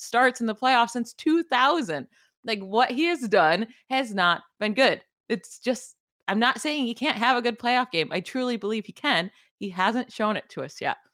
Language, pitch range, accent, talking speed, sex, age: English, 185-240 Hz, American, 210 wpm, female, 20-39